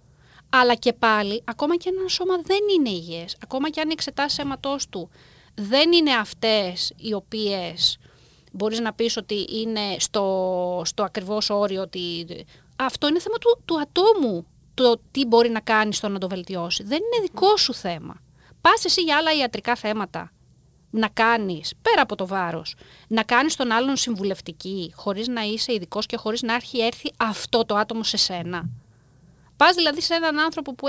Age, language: 30-49, Greek